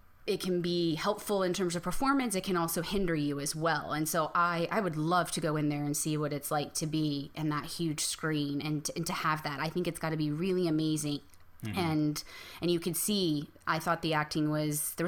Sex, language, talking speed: female, English, 235 wpm